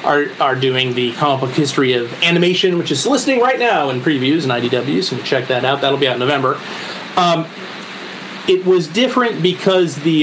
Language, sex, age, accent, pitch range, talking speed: English, male, 30-49, American, 135-165 Hz, 195 wpm